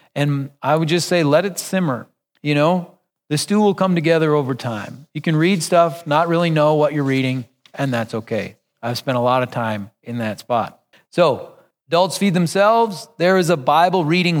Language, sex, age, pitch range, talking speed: English, male, 40-59, 135-165 Hz, 200 wpm